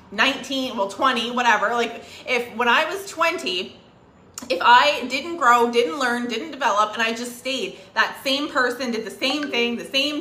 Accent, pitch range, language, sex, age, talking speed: American, 230-270 Hz, English, female, 20-39, 180 wpm